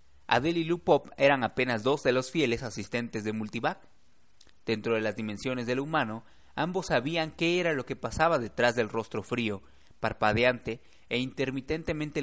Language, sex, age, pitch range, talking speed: Spanish, male, 30-49, 110-145 Hz, 155 wpm